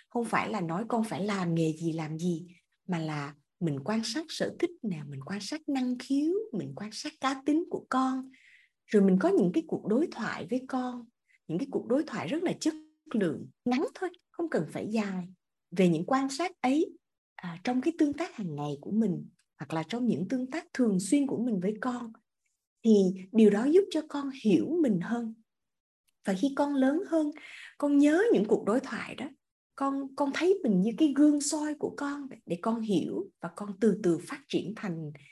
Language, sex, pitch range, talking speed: Vietnamese, female, 185-285 Hz, 205 wpm